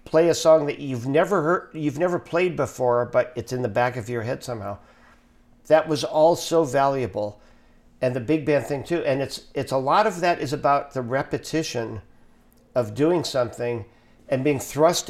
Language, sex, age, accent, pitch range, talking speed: English, male, 50-69, American, 115-145 Hz, 190 wpm